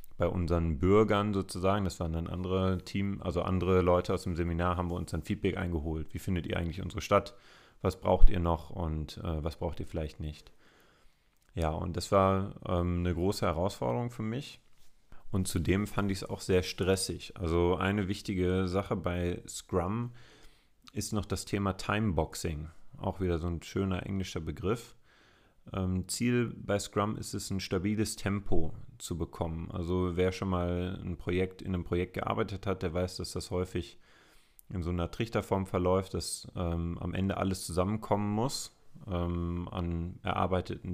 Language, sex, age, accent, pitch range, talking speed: German, male, 30-49, German, 85-100 Hz, 165 wpm